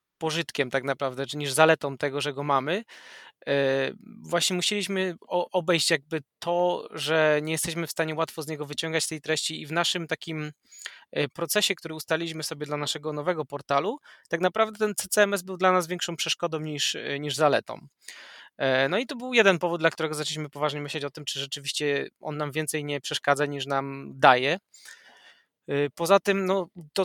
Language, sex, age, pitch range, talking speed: Polish, male, 20-39, 145-170 Hz, 170 wpm